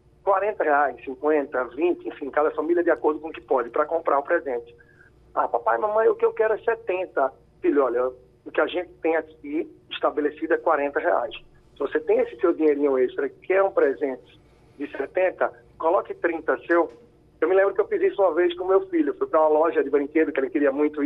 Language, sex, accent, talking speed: Portuguese, male, Brazilian, 220 wpm